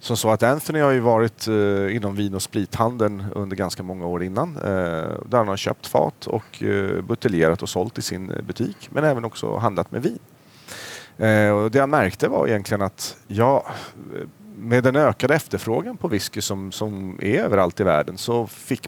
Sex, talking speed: male, 195 wpm